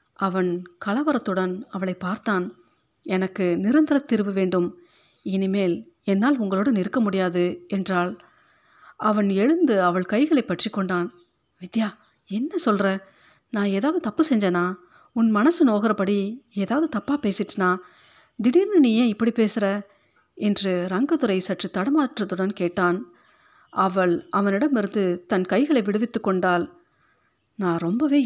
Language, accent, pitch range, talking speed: Tamil, native, 185-245 Hz, 105 wpm